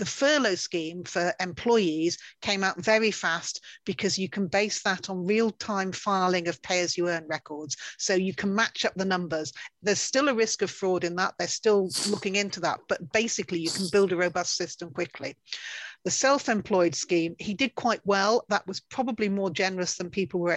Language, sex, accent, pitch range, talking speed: English, female, British, 180-225 Hz, 185 wpm